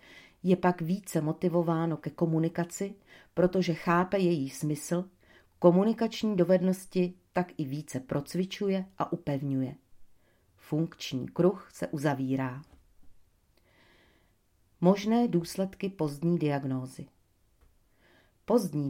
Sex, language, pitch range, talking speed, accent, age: female, Czech, 145-185 Hz, 85 wpm, native, 40-59